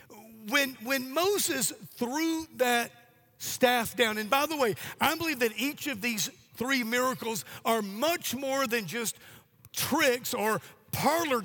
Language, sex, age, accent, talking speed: English, male, 50-69, American, 140 wpm